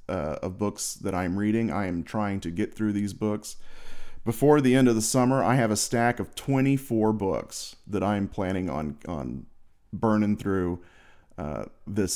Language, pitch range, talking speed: English, 100-125 Hz, 180 wpm